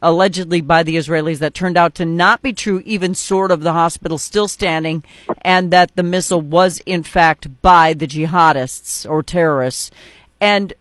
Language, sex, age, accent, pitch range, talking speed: English, female, 40-59, American, 170-210 Hz, 170 wpm